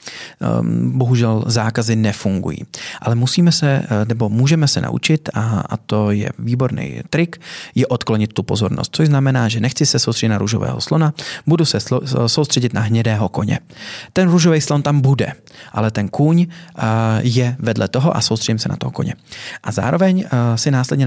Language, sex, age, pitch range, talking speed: Czech, male, 30-49, 110-145 Hz, 155 wpm